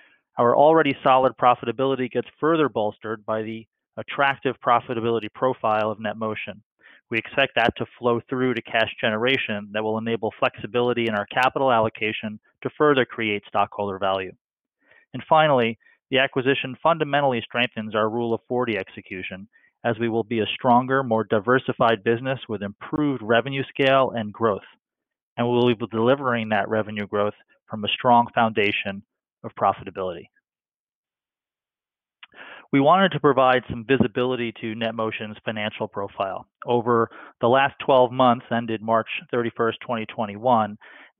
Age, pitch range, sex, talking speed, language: 30-49, 110-130 Hz, male, 135 wpm, English